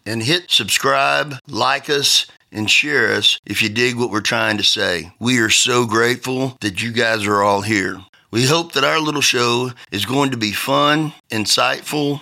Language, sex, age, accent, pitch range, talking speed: English, male, 50-69, American, 105-130 Hz, 185 wpm